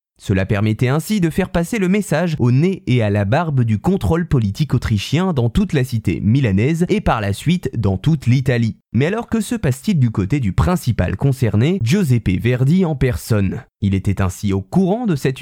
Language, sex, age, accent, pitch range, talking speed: French, male, 20-39, French, 115-170 Hz, 200 wpm